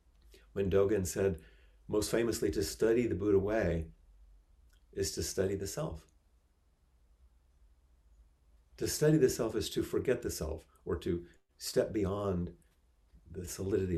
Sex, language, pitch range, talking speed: male, English, 75-100 Hz, 130 wpm